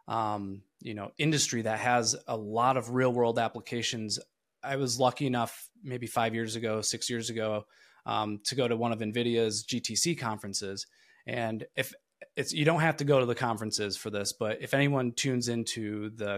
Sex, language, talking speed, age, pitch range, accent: male, English, 185 wpm, 20-39, 110-135 Hz, American